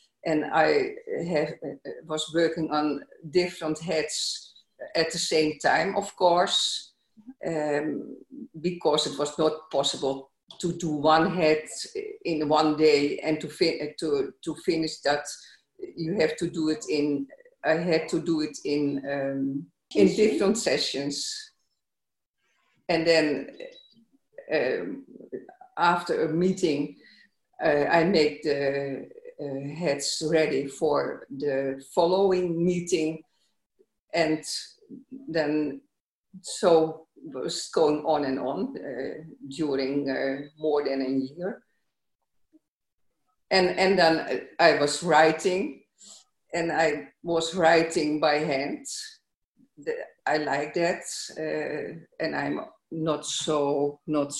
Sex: female